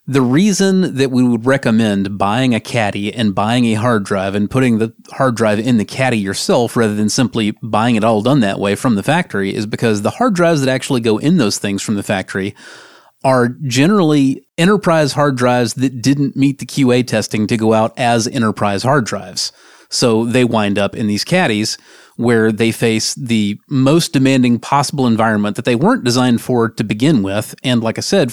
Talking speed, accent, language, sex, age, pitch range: 200 wpm, American, English, male, 30-49, 110-140 Hz